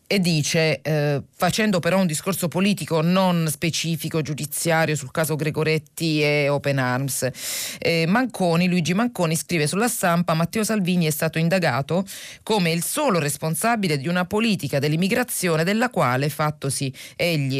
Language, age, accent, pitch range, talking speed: Italian, 30-49, native, 140-180 Hz, 140 wpm